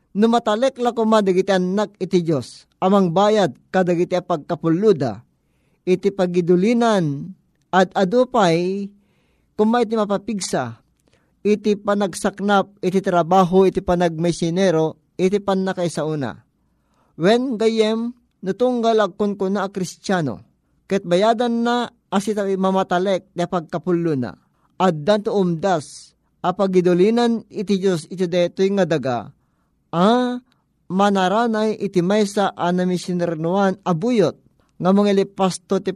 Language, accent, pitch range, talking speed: Filipino, native, 175-210 Hz, 100 wpm